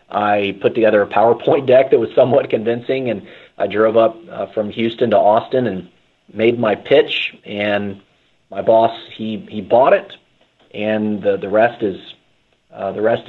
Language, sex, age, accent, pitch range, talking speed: English, male, 40-59, American, 105-130 Hz, 170 wpm